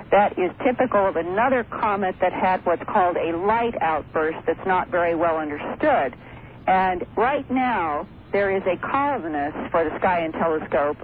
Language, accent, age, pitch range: English, American, 50-69, 170-240 Hz